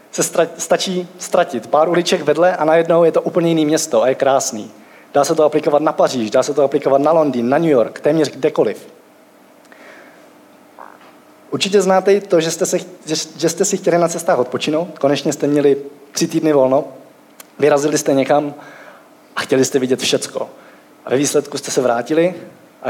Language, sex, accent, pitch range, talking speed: Czech, male, native, 130-165 Hz, 180 wpm